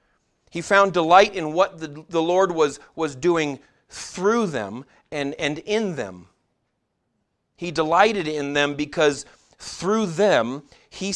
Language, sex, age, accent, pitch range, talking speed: English, male, 40-59, American, 130-170 Hz, 135 wpm